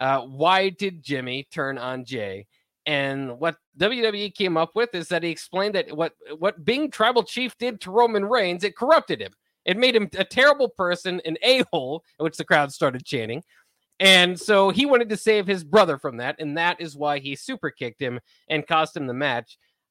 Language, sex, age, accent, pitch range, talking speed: English, male, 20-39, American, 145-185 Hz, 200 wpm